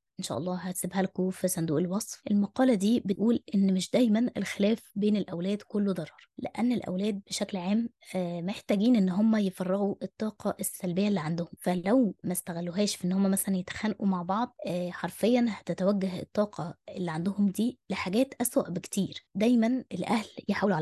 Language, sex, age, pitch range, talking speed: Arabic, female, 20-39, 185-225 Hz, 155 wpm